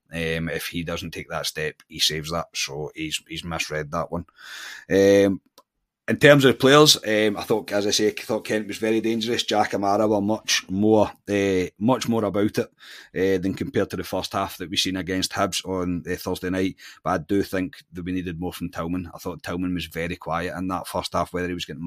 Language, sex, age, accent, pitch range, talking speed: English, male, 30-49, British, 85-100 Hz, 230 wpm